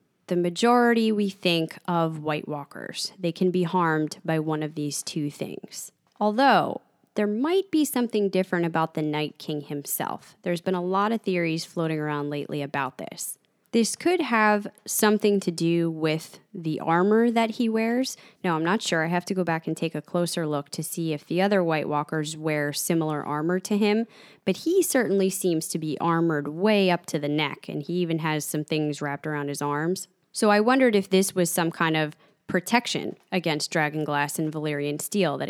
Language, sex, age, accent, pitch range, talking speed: English, female, 20-39, American, 160-205 Hz, 195 wpm